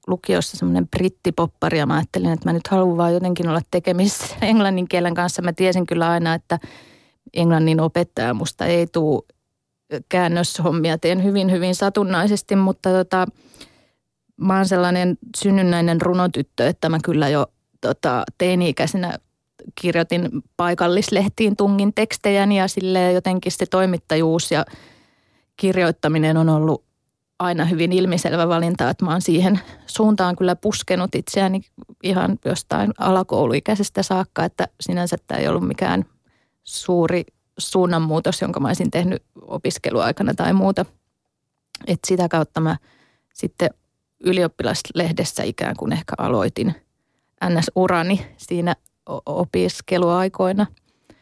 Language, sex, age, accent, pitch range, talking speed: Finnish, female, 20-39, native, 165-190 Hz, 120 wpm